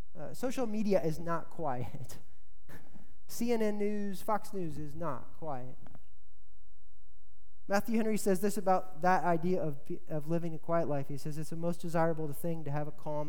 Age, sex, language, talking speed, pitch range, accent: 20-39, male, English, 165 wpm, 120-170 Hz, American